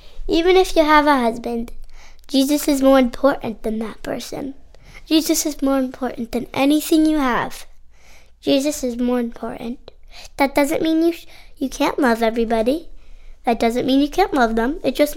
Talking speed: 170 wpm